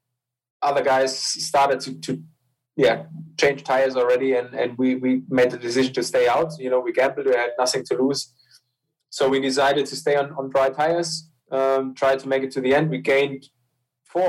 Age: 20-39